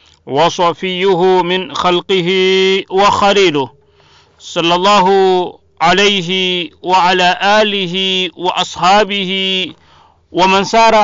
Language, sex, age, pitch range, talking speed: Swahili, male, 50-69, 170-205 Hz, 65 wpm